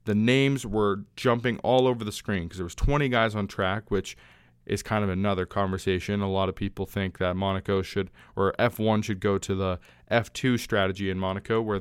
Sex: male